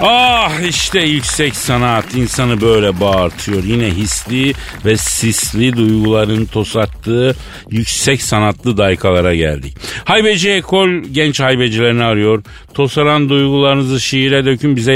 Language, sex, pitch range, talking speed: Turkish, male, 110-160 Hz, 110 wpm